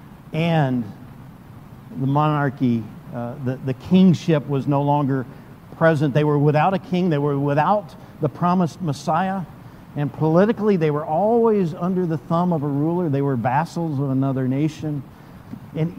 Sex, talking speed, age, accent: male, 150 wpm, 50-69, American